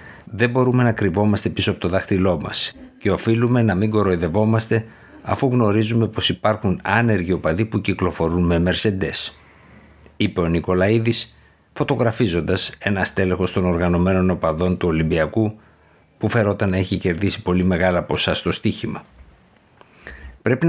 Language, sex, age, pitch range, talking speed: Greek, male, 60-79, 90-110 Hz, 135 wpm